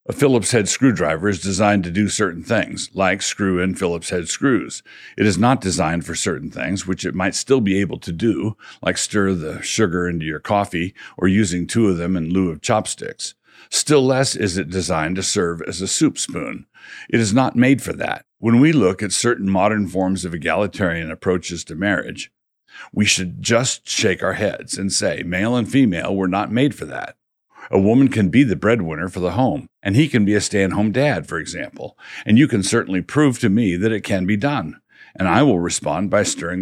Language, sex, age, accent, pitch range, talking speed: English, male, 60-79, American, 90-110 Hz, 205 wpm